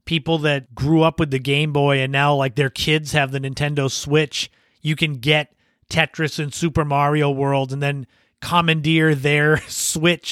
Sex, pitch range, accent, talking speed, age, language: male, 140-155 Hz, American, 175 wpm, 30-49, English